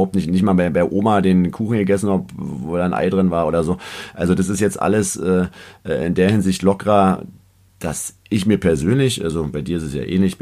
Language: German